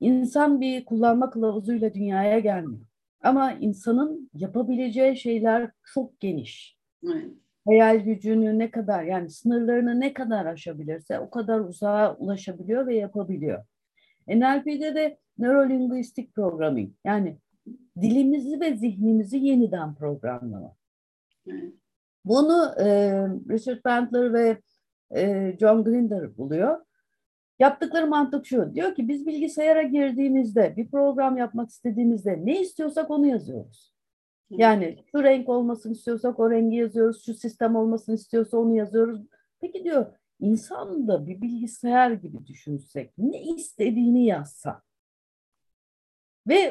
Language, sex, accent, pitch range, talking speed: Turkish, female, native, 205-275 Hz, 110 wpm